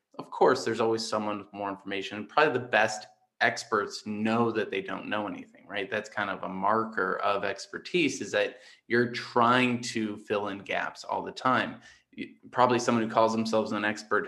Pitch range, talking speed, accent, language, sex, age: 105-125 Hz, 185 wpm, American, English, male, 20-39